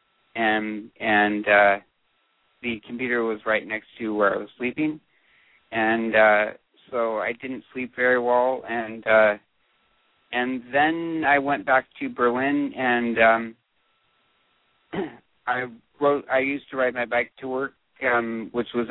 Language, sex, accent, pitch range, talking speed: English, male, American, 110-130 Hz, 145 wpm